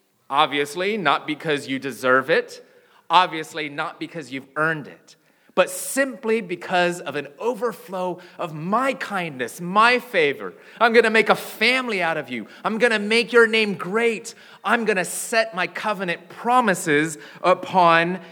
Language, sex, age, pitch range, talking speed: English, male, 30-49, 165-230 Hz, 155 wpm